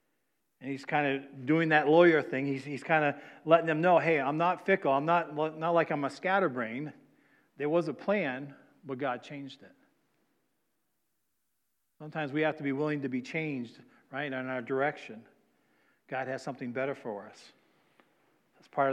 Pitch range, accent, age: 140-170 Hz, American, 50-69